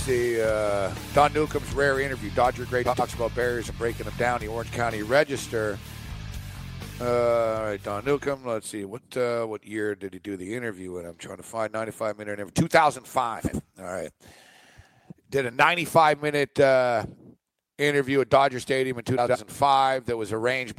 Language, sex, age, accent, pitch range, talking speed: English, male, 50-69, American, 110-135 Hz, 165 wpm